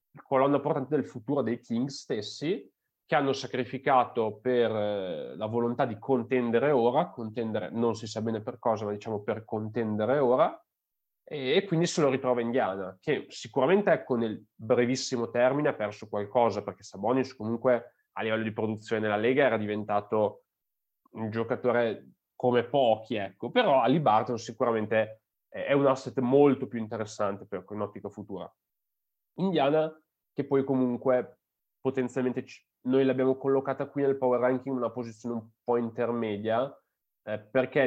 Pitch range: 110-125 Hz